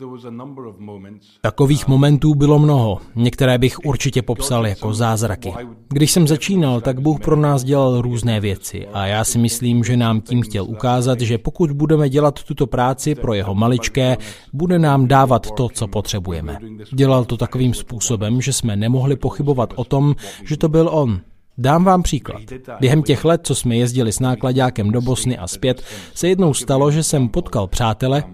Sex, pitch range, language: male, 110-140 Hz, Czech